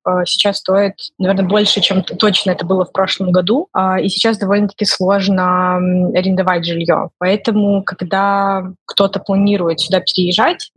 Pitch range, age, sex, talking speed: 180-205 Hz, 20-39, female, 130 wpm